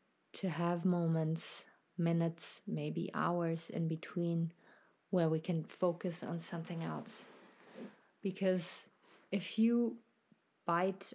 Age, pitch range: 30-49, 165-185 Hz